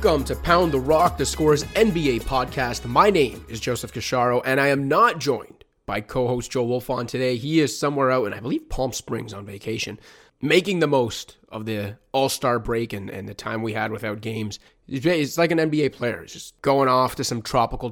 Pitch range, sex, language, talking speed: 125-165 Hz, male, English, 210 wpm